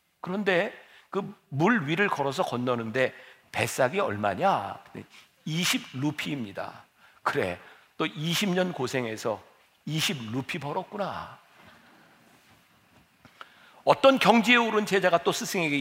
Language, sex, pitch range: Korean, male, 150-225 Hz